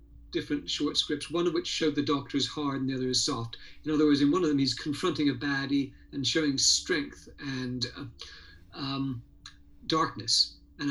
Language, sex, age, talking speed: English, male, 60-79, 195 wpm